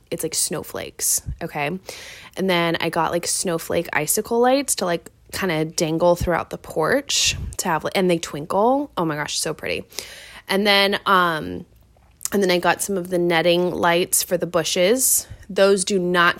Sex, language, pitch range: female, English, 175-235 Hz